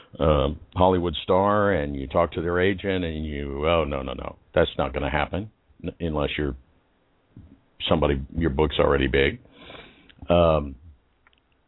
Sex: male